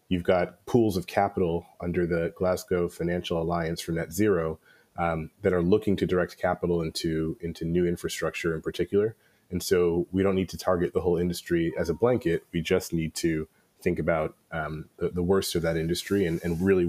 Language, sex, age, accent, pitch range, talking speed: English, male, 30-49, American, 85-95 Hz, 195 wpm